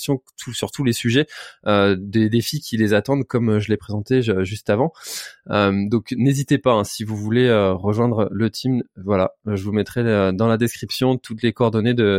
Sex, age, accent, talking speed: male, 20-39, French, 195 wpm